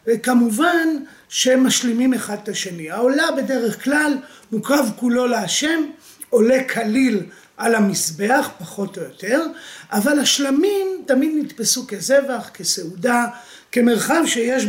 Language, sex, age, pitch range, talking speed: Hebrew, male, 40-59, 220-270 Hz, 110 wpm